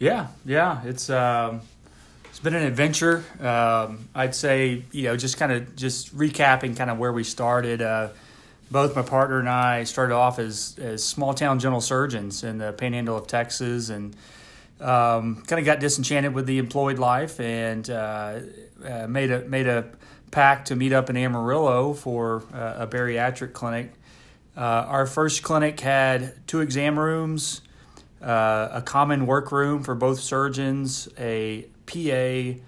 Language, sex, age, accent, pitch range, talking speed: English, male, 30-49, American, 115-135 Hz, 160 wpm